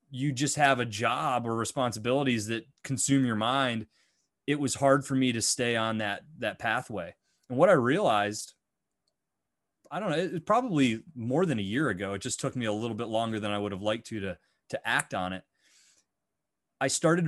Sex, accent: male, American